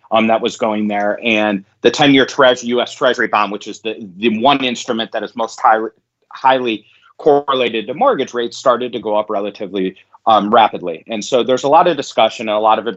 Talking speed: 215 wpm